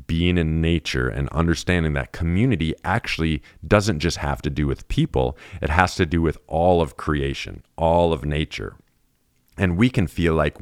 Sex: male